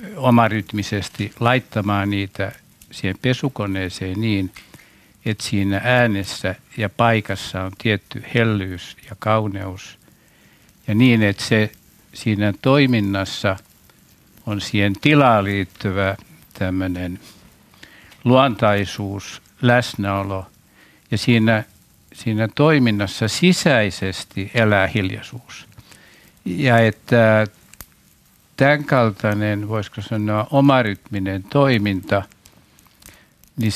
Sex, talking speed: male, 80 wpm